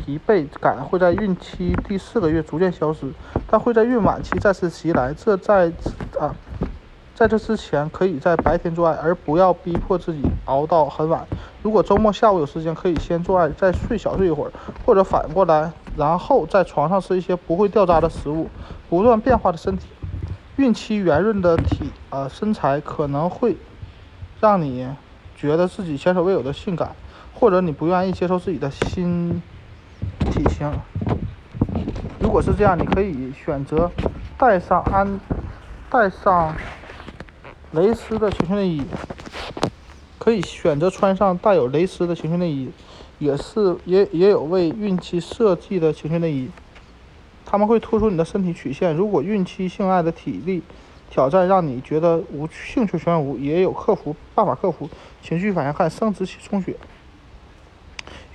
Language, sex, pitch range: Chinese, male, 145-195 Hz